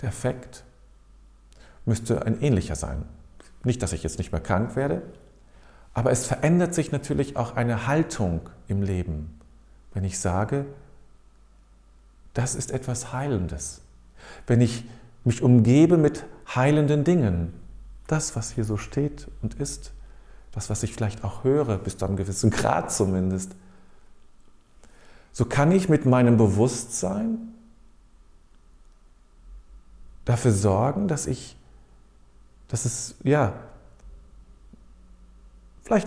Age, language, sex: 40-59, German, male